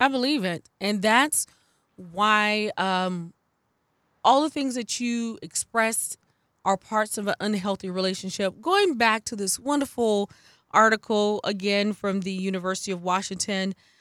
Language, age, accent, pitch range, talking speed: English, 20-39, American, 190-255 Hz, 135 wpm